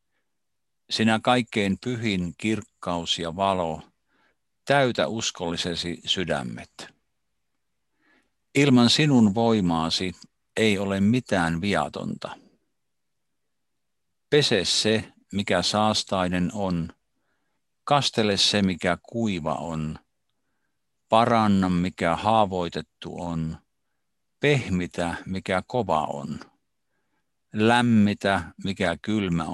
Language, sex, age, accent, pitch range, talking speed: Finnish, male, 50-69, native, 85-110 Hz, 75 wpm